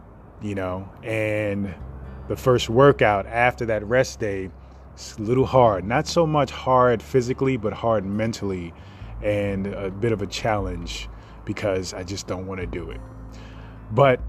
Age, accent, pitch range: 20-39, American, 95-120 Hz